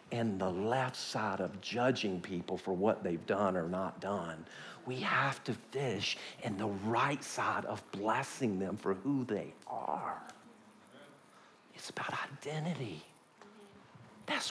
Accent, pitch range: American, 125-190 Hz